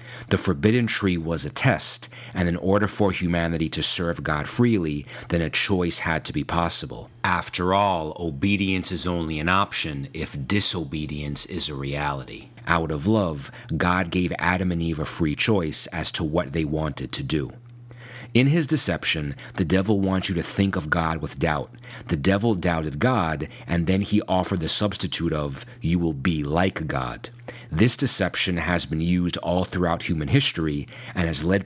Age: 30-49